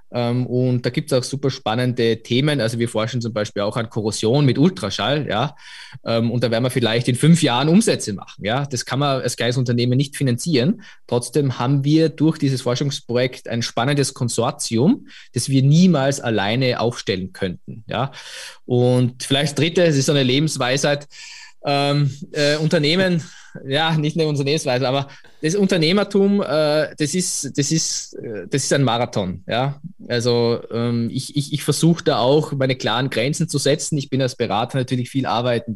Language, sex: German, male